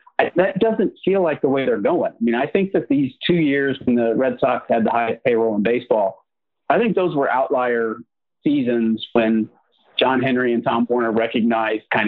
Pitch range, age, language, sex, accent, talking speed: 115-160 Hz, 40-59, English, male, American, 205 wpm